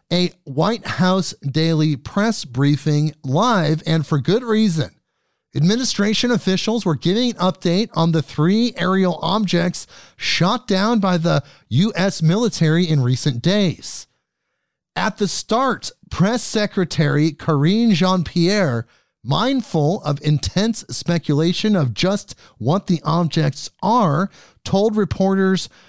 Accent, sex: American, male